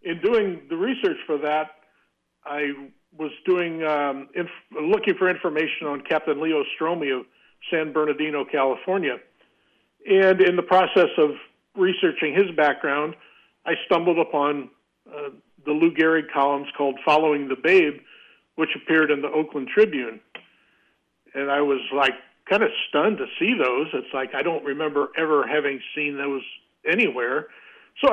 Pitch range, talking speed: 150-200 Hz, 145 wpm